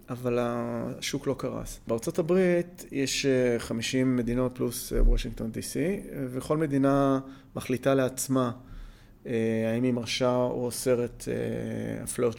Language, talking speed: Hebrew, 105 wpm